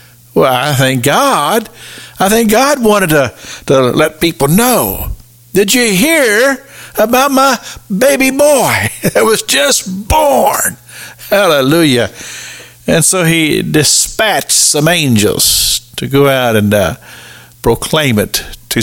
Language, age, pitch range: English, 50-69, 110-140 Hz